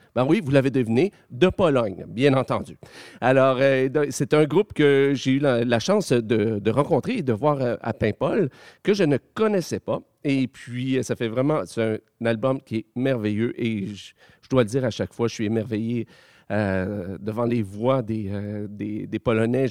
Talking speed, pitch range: 190 wpm, 115-145 Hz